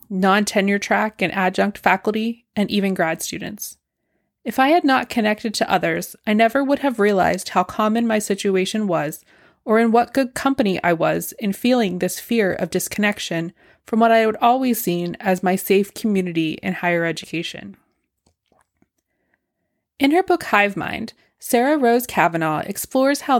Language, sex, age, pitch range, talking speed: English, female, 20-39, 180-230 Hz, 155 wpm